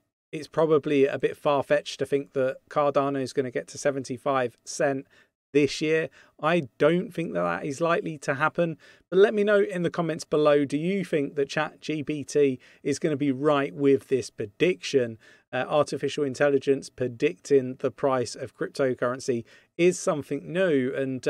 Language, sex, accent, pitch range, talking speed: English, male, British, 130-155 Hz, 170 wpm